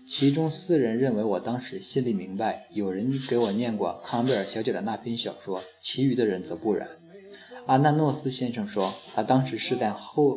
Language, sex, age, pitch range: Chinese, male, 20-39, 110-150 Hz